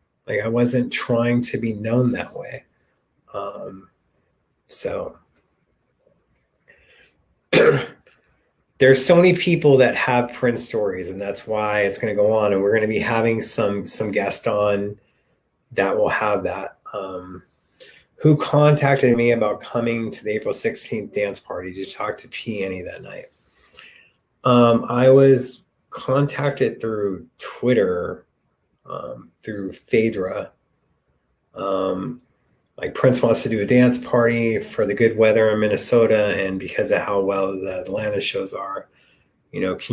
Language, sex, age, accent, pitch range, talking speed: English, male, 30-49, American, 105-130 Hz, 140 wpm